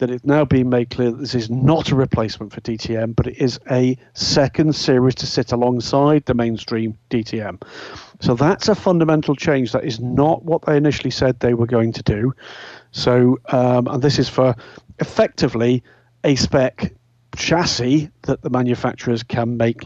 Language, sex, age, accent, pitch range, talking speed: English, male, 40-59, British, 120-150 Hz, 175 wpm